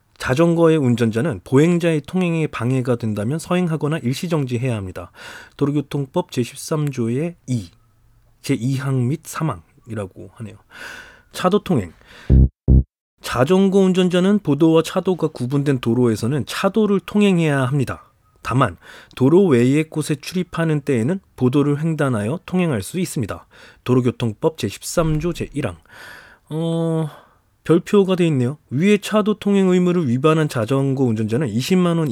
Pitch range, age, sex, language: 115-175 Hz, 30-49, male, Korean